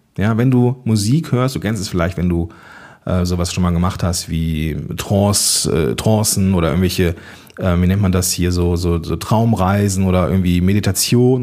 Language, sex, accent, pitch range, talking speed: German, male, German, 95-130 Hz, 180 wpm